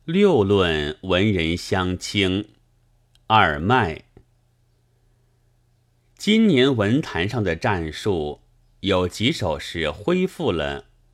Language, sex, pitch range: Chinese, male, 85-120 Hz